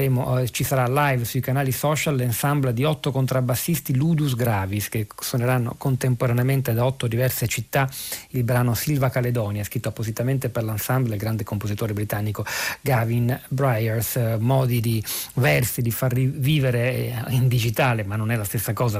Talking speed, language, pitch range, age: 150 wpm, Italian, 120-140 Hz, 40-59